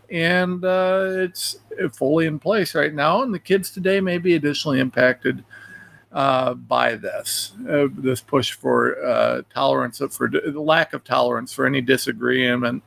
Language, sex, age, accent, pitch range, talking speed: English, male, 50-69, American, 120-160 Hz, 160 wpm